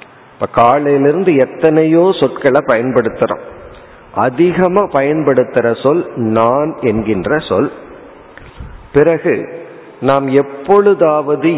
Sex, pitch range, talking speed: male, 130-180 Hz, 75 wpm